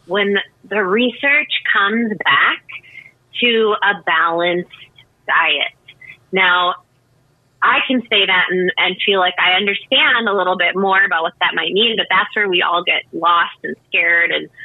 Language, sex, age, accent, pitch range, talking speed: English, female, 20-39, American, 170-210 Hz, 160 wpm